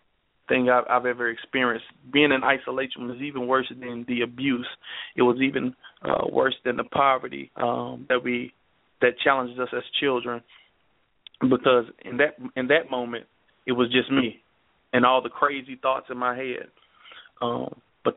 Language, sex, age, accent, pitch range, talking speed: English, male, 30-49, American, 120-135 Hz, 165 wpm